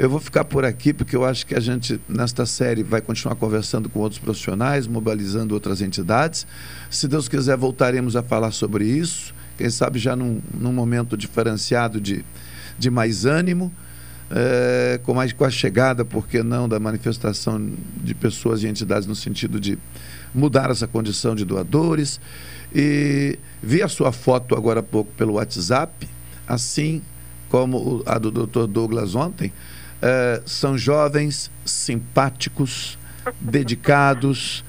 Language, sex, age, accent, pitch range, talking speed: Portuguese, male, 50-69, Brazilian, 105-135 Hz, 145 wpm